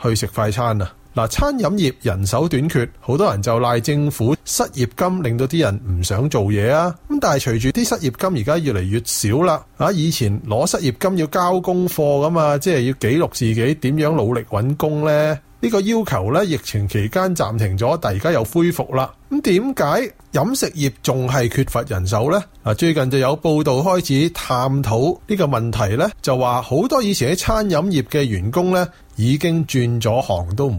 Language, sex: Chinese, male